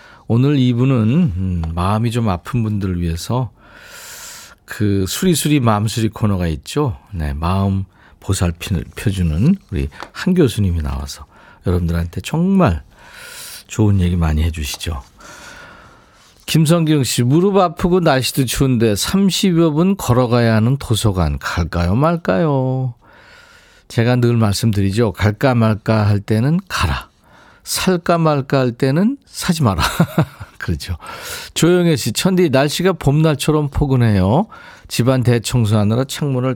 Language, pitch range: Korean, 95-160 Hz